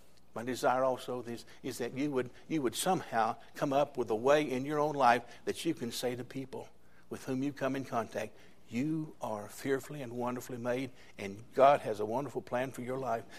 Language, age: English, 60-79